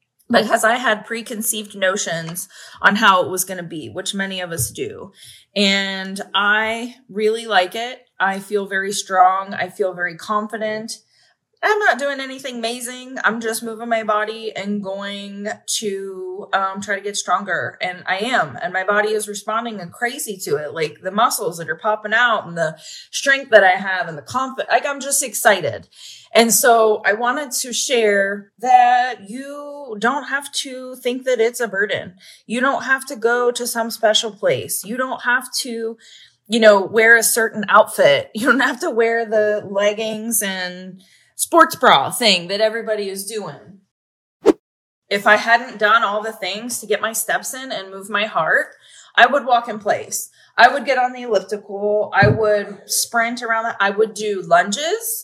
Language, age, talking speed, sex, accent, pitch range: English, 20-39, 180 wpm, female, American, 200-245 Hz